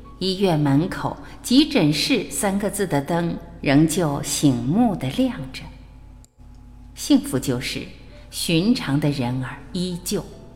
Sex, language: female, Chinese